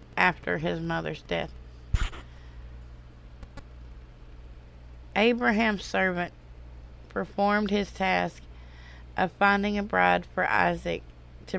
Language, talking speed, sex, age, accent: English, 85 wpm, female, 30-49, American